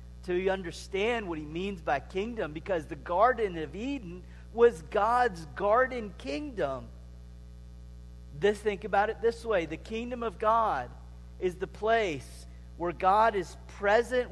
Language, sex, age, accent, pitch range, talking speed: English, male, 40-59, American, 155-235 Hz, 145 wpm